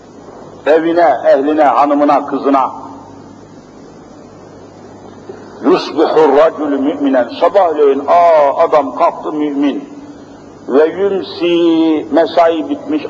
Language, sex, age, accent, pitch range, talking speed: Turkish, male, 60-79, native, 150-185 Hz, 75 wpm